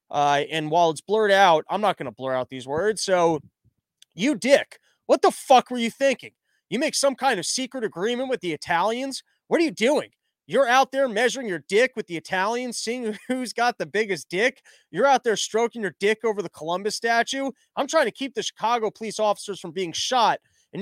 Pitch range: 180-255 Hz